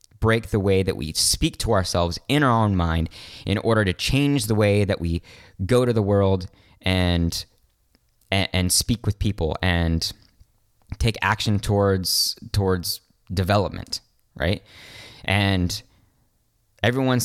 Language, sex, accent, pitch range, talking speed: English, male, American, 90-110 Hz, 135 wpm